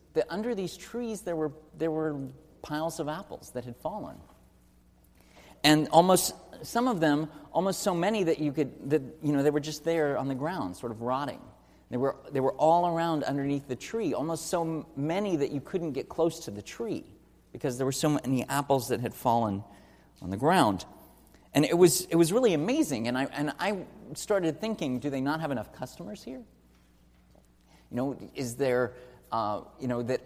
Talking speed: 195 wpm